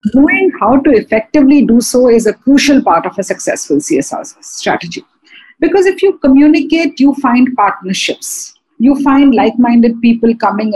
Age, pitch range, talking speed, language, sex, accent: 50-69, 225-290 Hz, 150 wpm, English, female, Indian